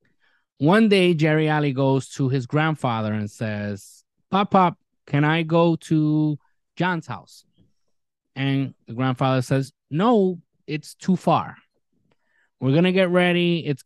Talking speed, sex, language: 140 wpm, male, English